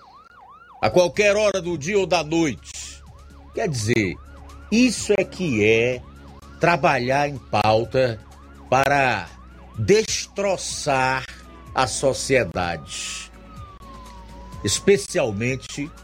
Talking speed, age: 80 wpm, 50-69